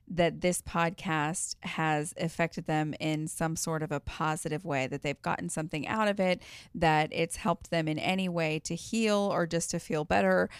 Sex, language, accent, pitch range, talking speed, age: female, English, American, 160-195 Hz, 190 wpm, 30-49